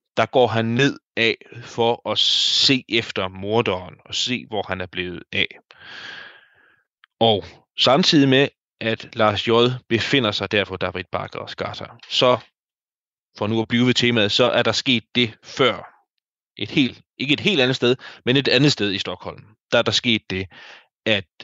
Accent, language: native, Danish